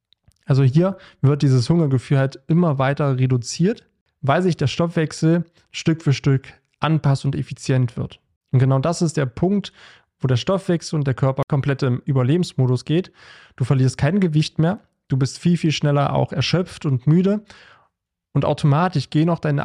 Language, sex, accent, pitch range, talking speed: German, male, German, 135-160 Hz, 170 wpm